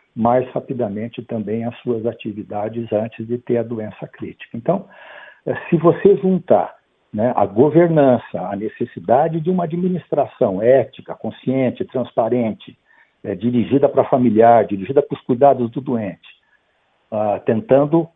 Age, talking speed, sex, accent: 60-79, 130 wpm, male, Brazilian